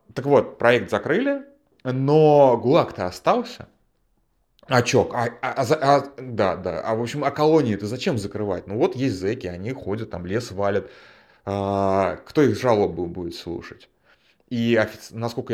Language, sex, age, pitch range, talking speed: Russian, male, 20-39, 100-130 Hz, 145 wpm